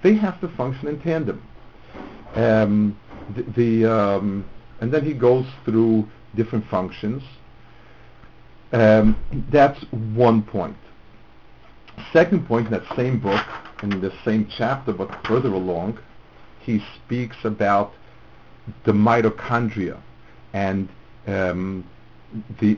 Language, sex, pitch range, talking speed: English, male, 95-115 Hz, 110 wpm